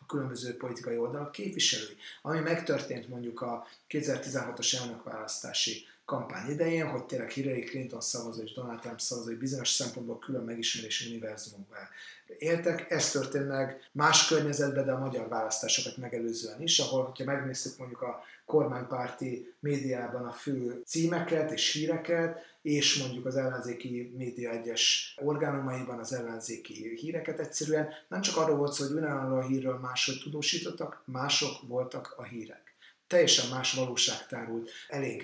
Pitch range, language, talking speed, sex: 125-150 Hz, Hungarian, 135 wpm, male